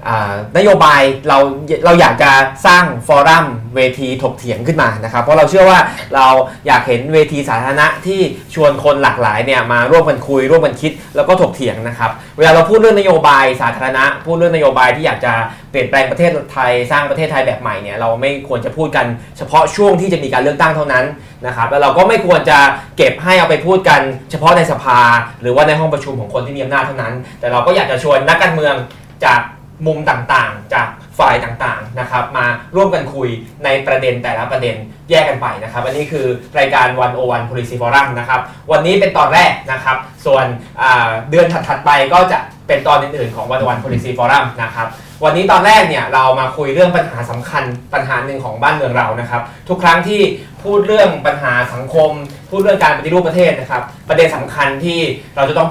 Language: Thai